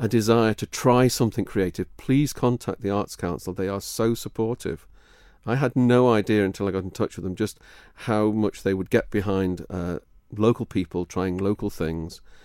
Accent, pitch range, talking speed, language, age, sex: British, 95-120 Hz, 190 wpm, English, 40-59, male